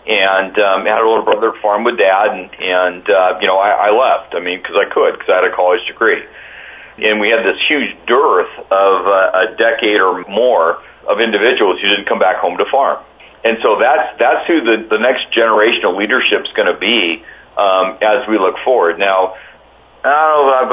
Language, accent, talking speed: English, American, 215 wpm